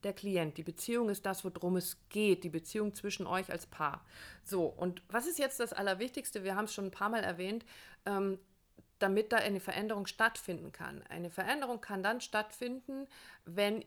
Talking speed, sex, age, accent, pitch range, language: 185 wpm, female, 50-69, German, 185-230 Hz, German